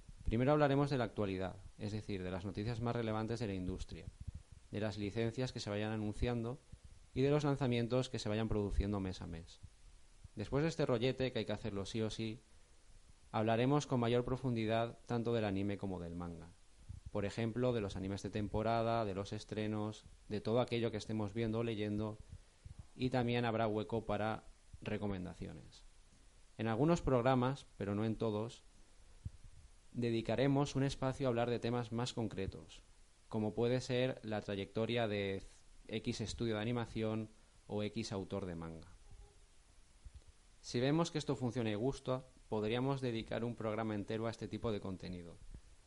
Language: Spanish